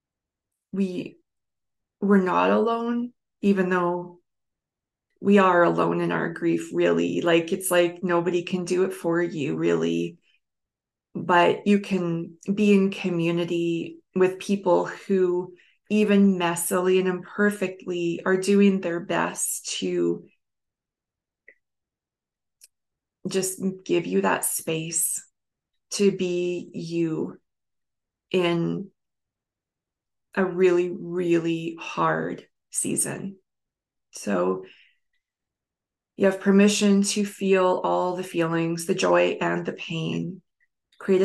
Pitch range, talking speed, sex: 160-190 Hz, 100 wpm, female